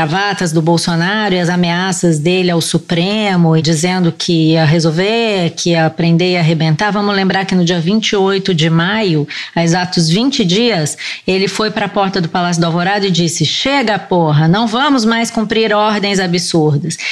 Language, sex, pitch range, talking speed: Portuguese, female, 175-220 Hz, 175 wpm